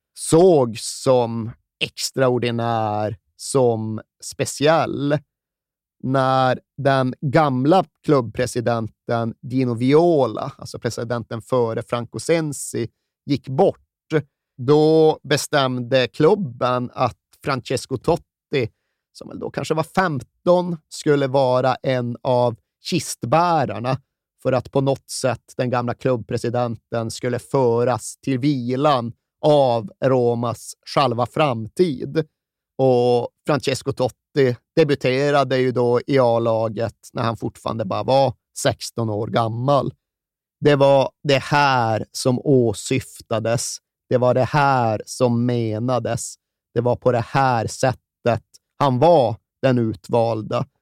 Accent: native